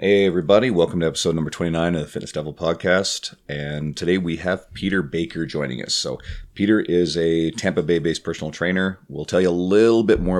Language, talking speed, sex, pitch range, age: English, 200 wpm, male, 80-100 Hz, 30-49